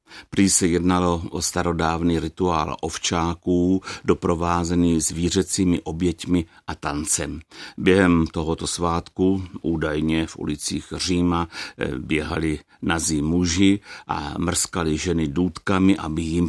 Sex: male